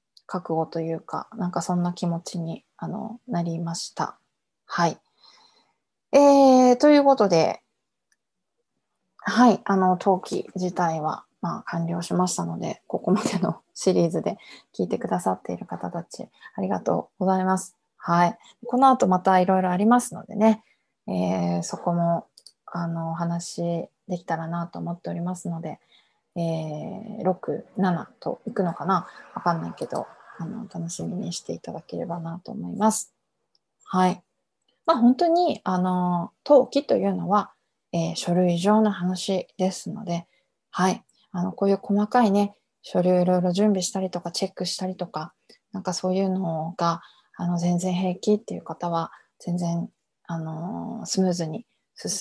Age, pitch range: 20-39, 170-210 Hz